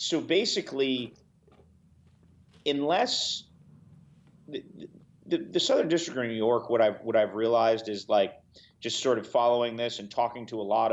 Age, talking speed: 30-49, 160 wpm